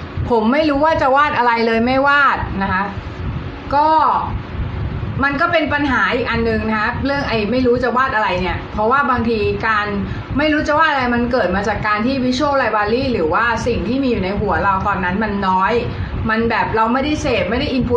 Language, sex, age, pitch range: Thai, female, 30-49, 220-275 Hz